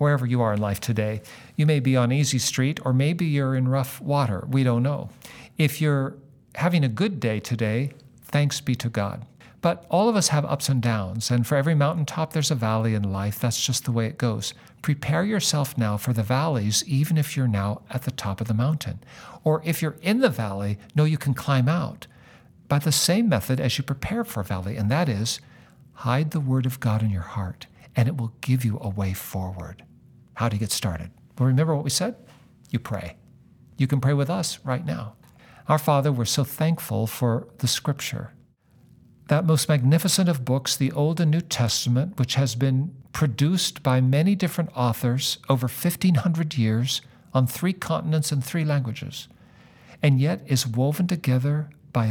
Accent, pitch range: American, 120-150 Hz